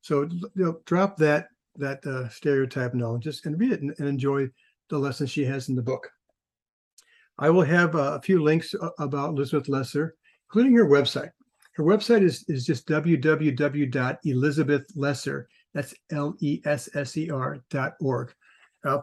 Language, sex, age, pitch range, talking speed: English, male, 50-69, 135-165 Hz, 145 wpm